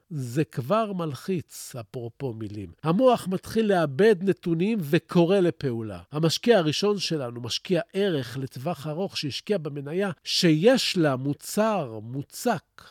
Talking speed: 110 wpm